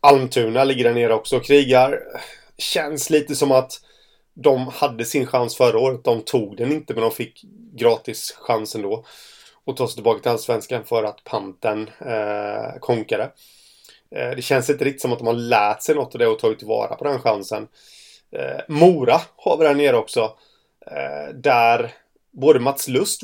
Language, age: Swedish, 30-49